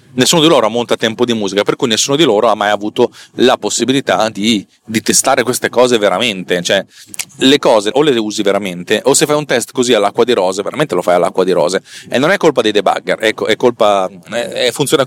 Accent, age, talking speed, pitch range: native, 30-49, 235 wpm, 110-145 Hz